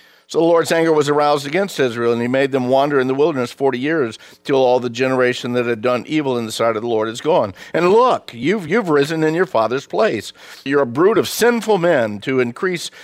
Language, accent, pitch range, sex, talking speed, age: English, American, 115-140 Hz, male, 235 wpm, 50-69